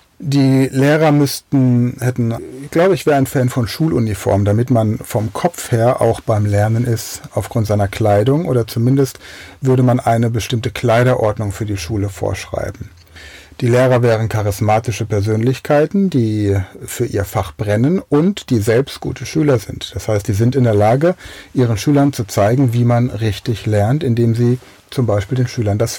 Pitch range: 105-140 Hz